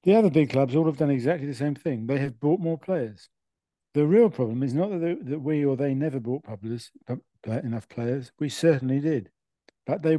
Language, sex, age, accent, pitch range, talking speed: English, male, 50-69, British, 125-155 Hz, 205 wpm